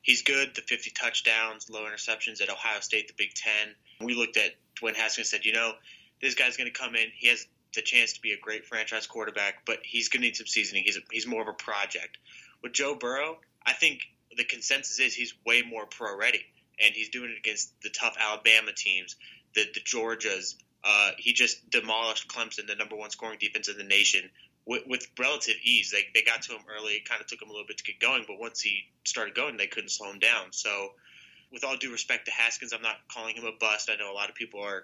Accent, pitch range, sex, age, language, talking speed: American, 110-120 Hz, male, 20-39, English, 240 wpm